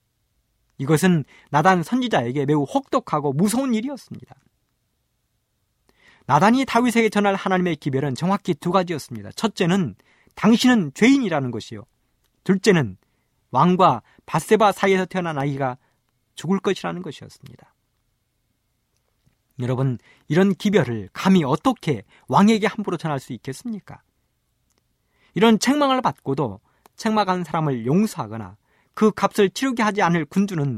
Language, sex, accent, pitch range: Korean, male, native, 125-205 Hz